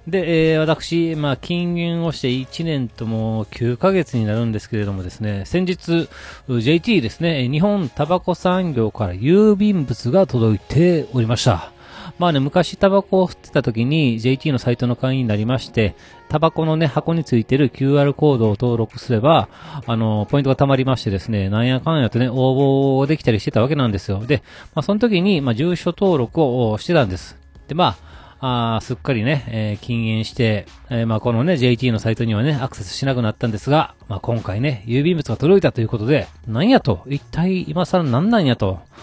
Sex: male